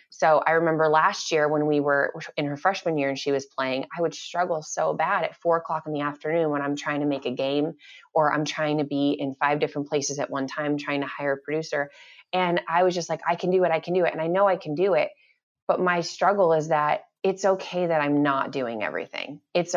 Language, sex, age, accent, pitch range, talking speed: English, female, 20-39, American, 145-170 Hz, 255 wpm